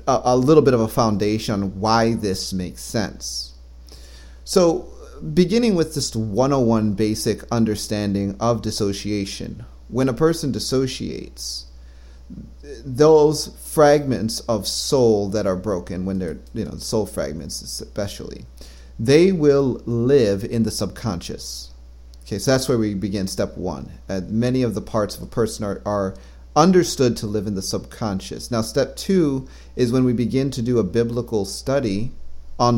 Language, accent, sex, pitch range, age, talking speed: English, American, male, 85-130 Hz, 30-49, 150 wpm